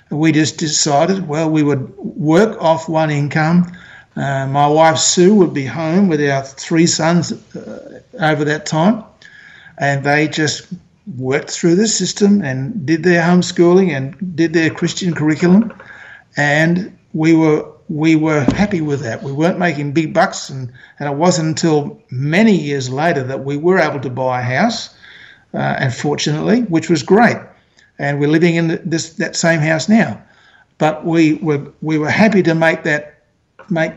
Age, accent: 60-79, Australian